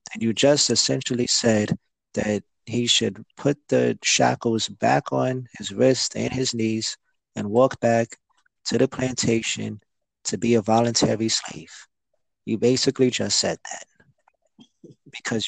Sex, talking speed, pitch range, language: male, 130 wpm, 115-155 Hz, English